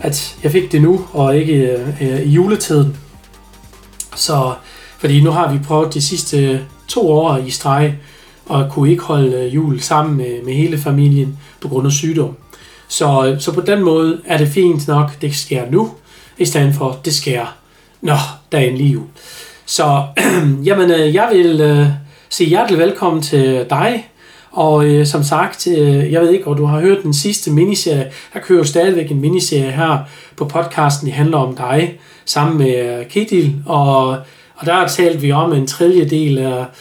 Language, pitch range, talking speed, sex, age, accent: Danish, 140-170 Hz, 185 wpm, male, 40-59, native